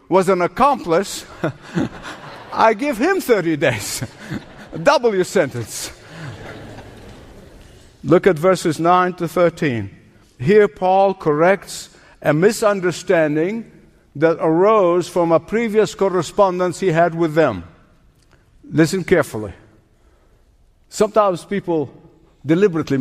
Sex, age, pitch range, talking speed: male, 60-79, 160-225 Hz, 95 wpm